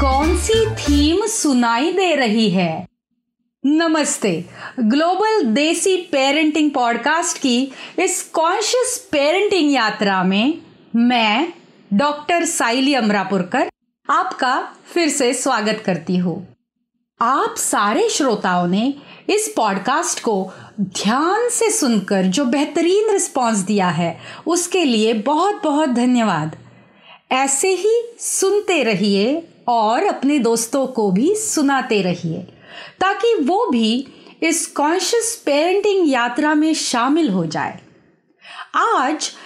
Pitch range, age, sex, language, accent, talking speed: 225-345 Hz, 40-59, female, Hindi, native, 110 wpm